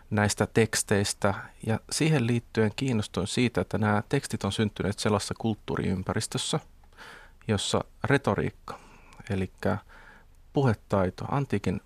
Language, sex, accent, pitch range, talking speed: Finnish, male, native, 95-115 Hz, 95 wpm